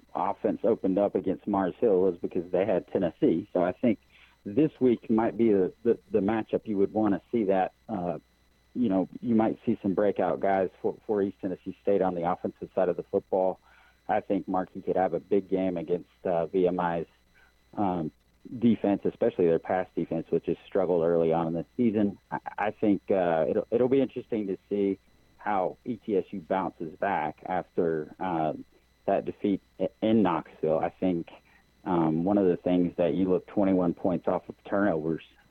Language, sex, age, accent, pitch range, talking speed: English, male, 40-59, American, 85-100 Hz, 185 wpm